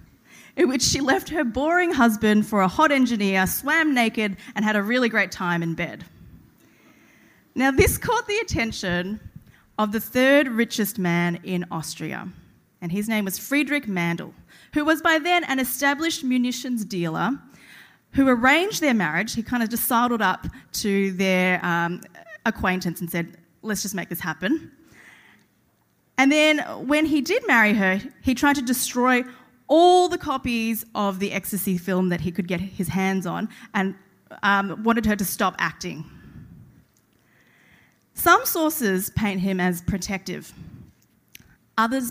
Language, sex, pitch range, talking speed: English, female, 185-265 Hz, 150 wpm